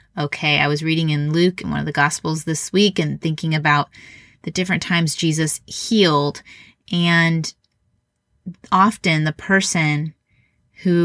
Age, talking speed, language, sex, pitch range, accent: 20-39, 140 wpm, English, female, 155-190 Hz, American